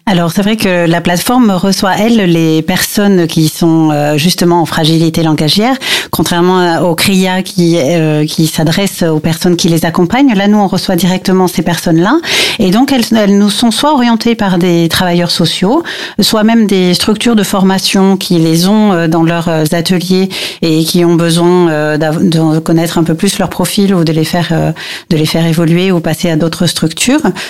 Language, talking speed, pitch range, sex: French, 190 wpm, 160-190 Hz, female